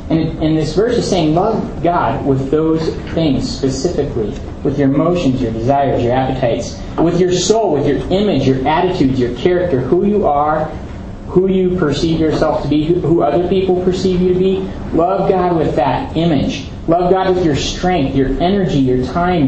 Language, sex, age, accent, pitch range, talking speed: English, male, 30-49, American, 135-175 Hz, 180 wpm